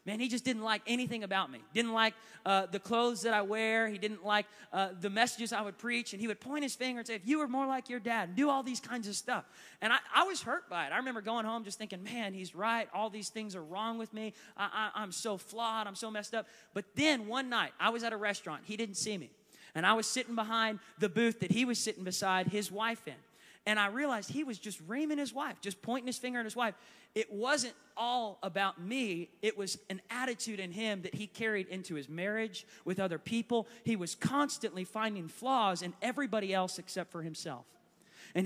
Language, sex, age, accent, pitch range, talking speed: English, male, 30-49, American, 185-230 Hz, 235 wpm